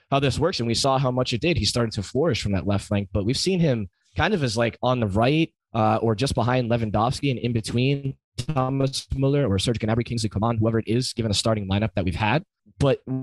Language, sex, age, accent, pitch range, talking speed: English, male, 20-39, American, 100-125 Hz, 250 wpm